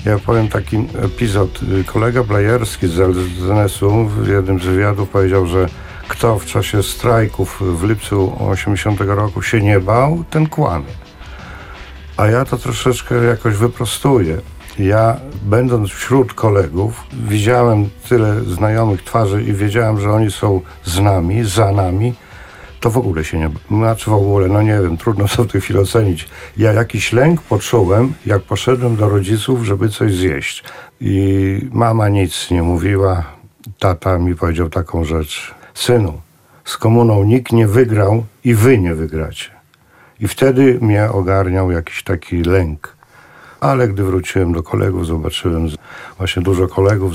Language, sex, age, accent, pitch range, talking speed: Polish, male, 50-69, native, 90-115 Hz, 145 wpm